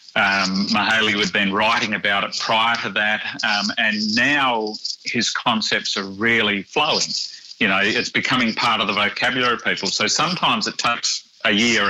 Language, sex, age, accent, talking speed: English, male, 40-59, Australian, 170 wpm